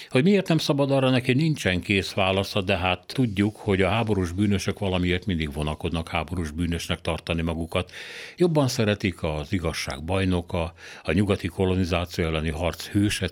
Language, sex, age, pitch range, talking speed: Hungarian, male, 60-79, 85-105 Hz, 155 wpm